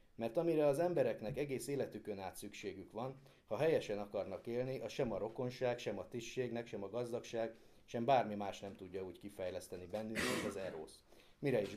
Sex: male